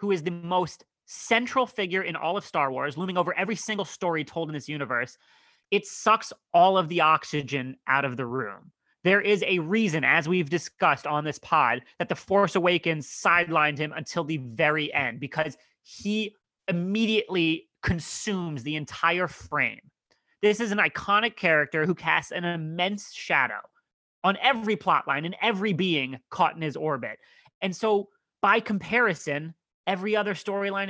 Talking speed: 165 wpm